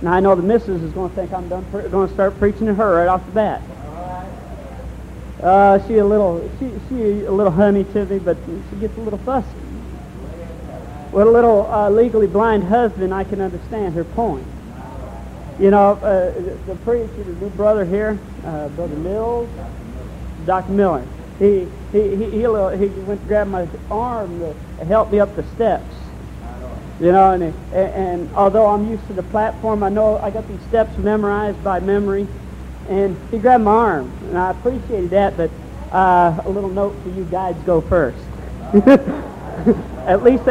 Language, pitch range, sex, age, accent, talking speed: English, 185-215 Hz, male, 50-69, American, 180 wpm